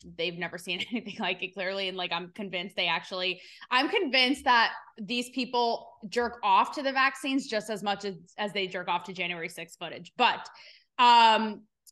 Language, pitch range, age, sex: English, 185-240 Hz, 20-39, female